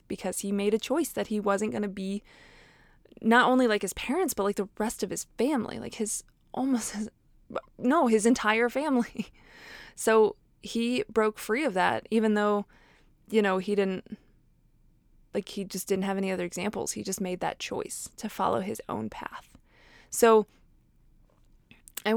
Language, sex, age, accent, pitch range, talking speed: English, female, 20-39, American, 190-220 Hz, 170 wpm